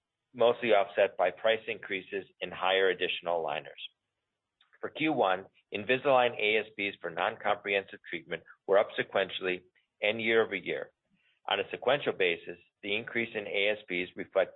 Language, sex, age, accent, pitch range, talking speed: English, male, 50-69, American, 95-125 Hz, 130 wpm